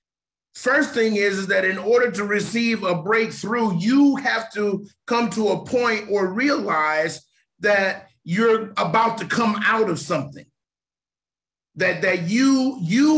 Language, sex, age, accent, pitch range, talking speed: English, male, 40-59, American, 200-245 Hz, 145 wpm